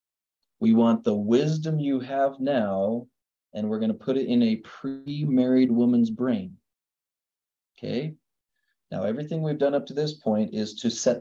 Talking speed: 160 wpm